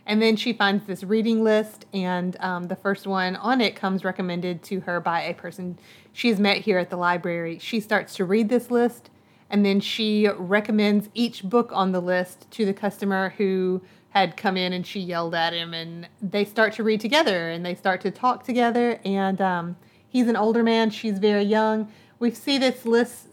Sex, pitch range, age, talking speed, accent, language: female, 185-220 Hz, 30-49, 205 wpm, American, English